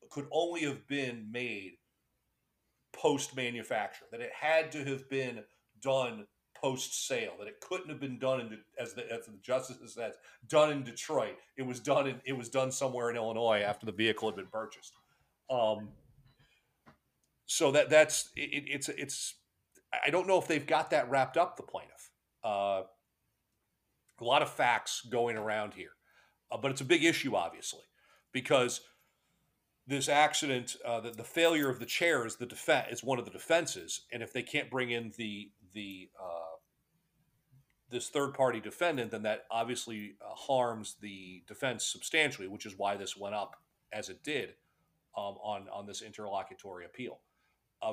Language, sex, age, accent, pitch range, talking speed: English, male, 40-59, American, 110-145 Hz, 170 wpm